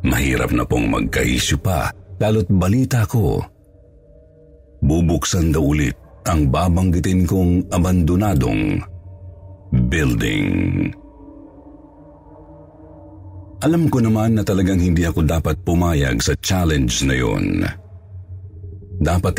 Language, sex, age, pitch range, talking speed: Filipino, male, 50-69, 80-100 Hz, 95 wpm